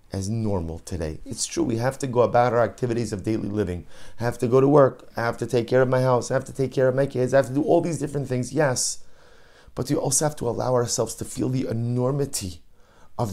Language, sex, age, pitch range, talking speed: English, male, 30-49, 100-130 Hz, 260 wpm